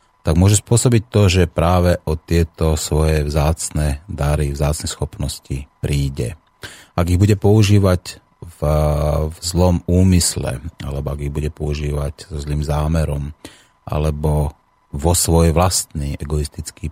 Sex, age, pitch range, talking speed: male, 30-49, 75-85 Hz, 125 wpm